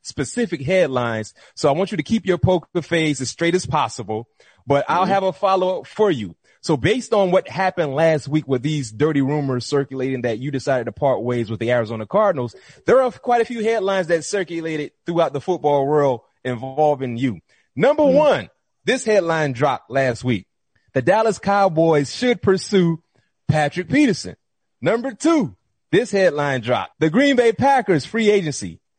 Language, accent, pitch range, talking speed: English, American, 130-195 Hz, 170 wpm